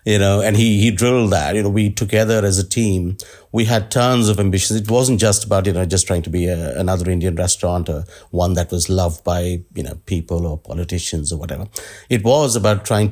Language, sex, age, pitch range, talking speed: English, male, 50-69, 95-120 Hz, 230 wpm